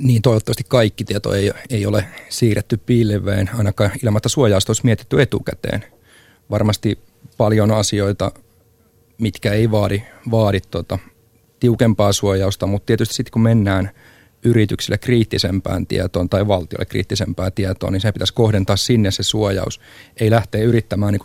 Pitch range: 95-115 Hz